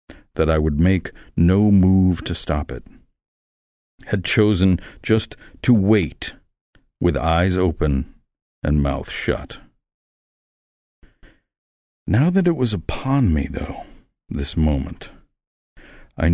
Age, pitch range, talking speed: 50-69, 75-100 Hz, 110 wpm